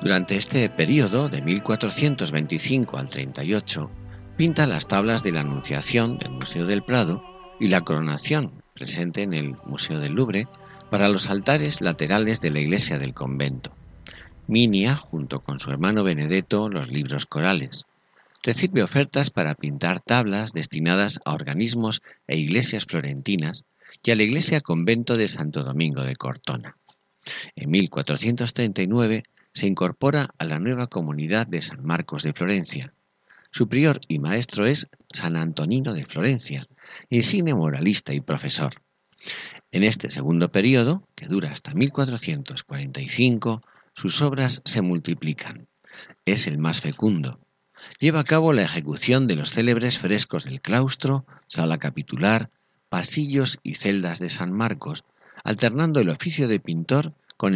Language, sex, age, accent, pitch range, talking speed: Spanish, male, 50-69, Spanish, 80-130 Hz, 140 wpm